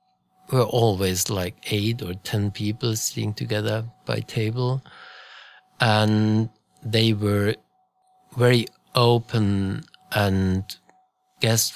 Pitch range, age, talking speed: 105-135 Hz, 50-69, 90 wpm